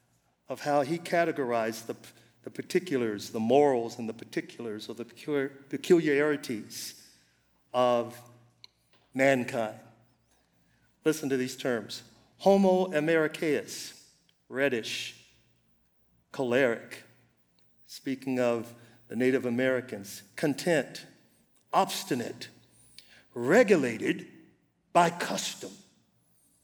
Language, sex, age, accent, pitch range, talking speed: English, male, 50-69, American, 120-180 Hz, 80 wpm